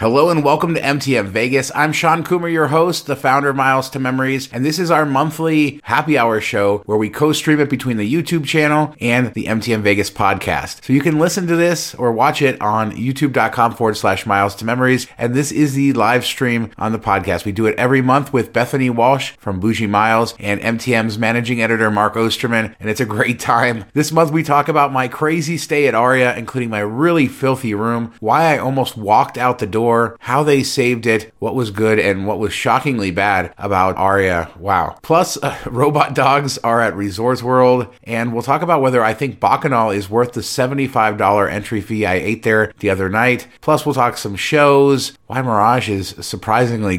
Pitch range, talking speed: 110-140 Hz, 205 wpm